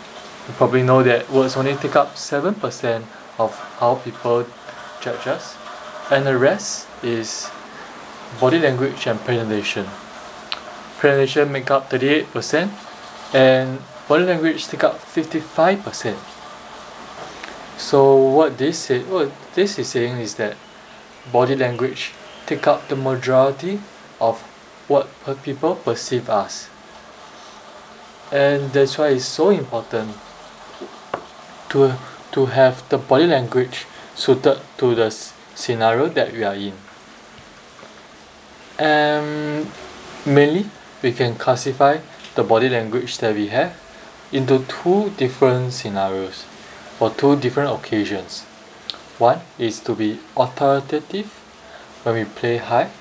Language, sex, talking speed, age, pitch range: English, male, 115 wpm, 20-39, 120-140 Hz